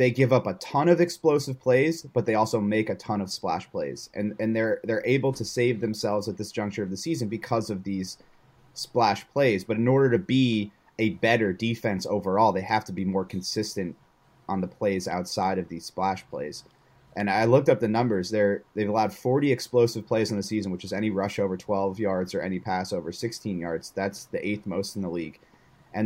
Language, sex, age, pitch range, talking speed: English, male, 30-49, 100-120 Hz, 220 wpm